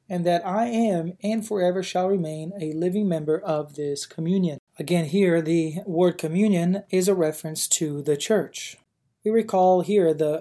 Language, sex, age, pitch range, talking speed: English, male, 20-39, 160-190 Hz, 165 wpm